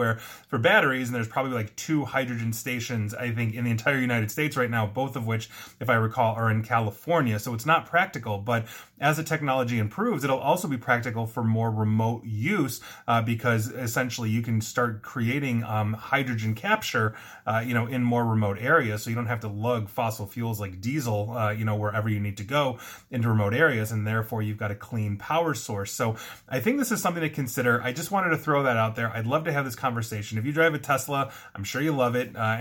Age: 30-49